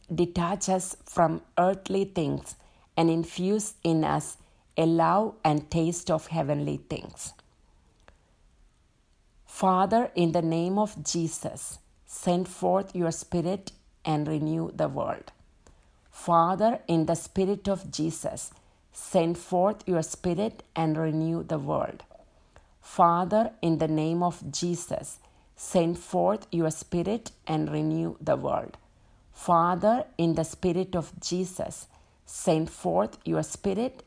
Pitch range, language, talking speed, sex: 160-185 Hz, English, 120 wpm, female